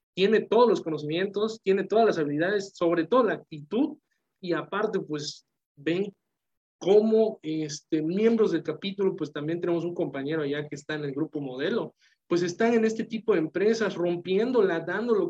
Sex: male